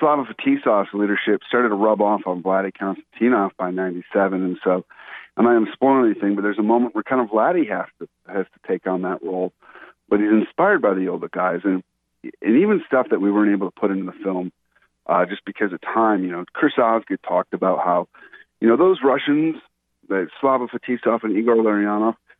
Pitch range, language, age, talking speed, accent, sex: 95-125 Hz, English, 40-59, 205 wpm, American, male